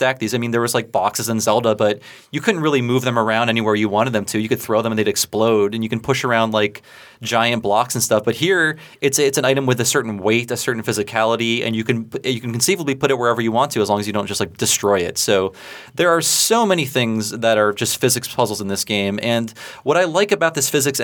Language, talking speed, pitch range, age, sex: English, 265 wpm, 110-140 Hz, 30-49, male